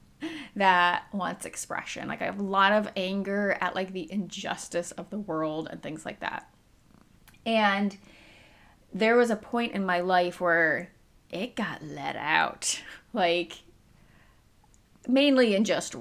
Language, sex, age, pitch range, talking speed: English, female, 30-49, 170-215 Hz, 140 wpm